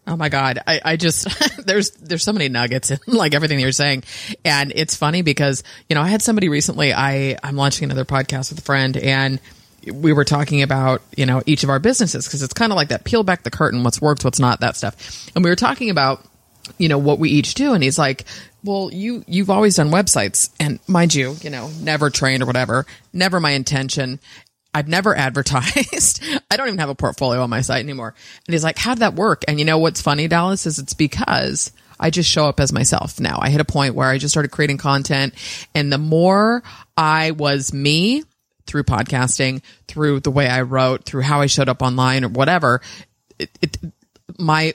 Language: English